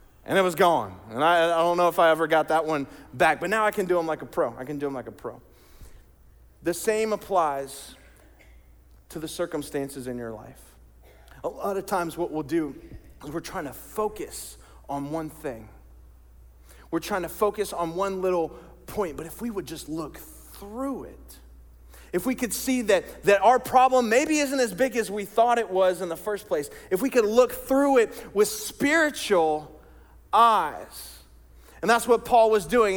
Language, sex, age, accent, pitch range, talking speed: English, male, 30-49, American, 150-225 Hz, 195 wpm